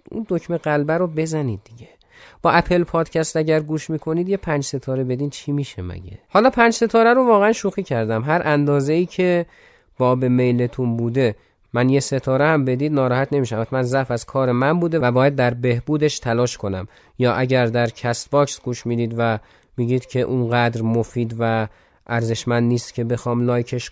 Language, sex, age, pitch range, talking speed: Persian, male, 30-49, 115-150 Hz, 175 wpm